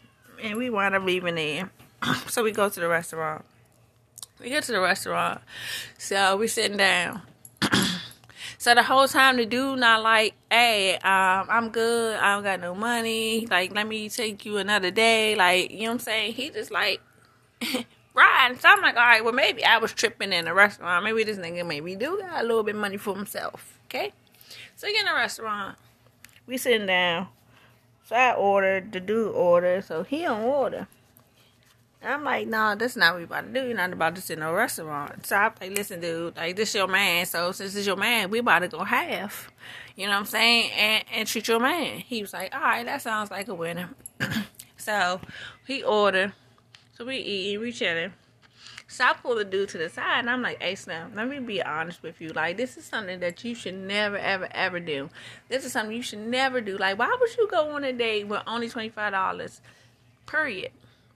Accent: American